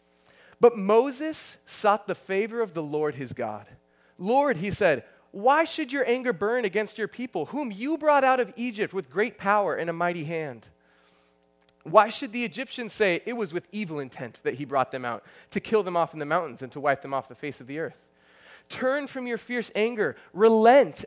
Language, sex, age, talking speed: English, male, 20-39, 205 wpm